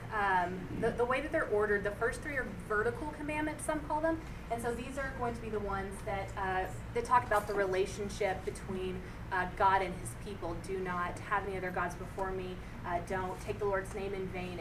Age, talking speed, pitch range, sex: 20-39, 220 wpm, 185-210 Hz, female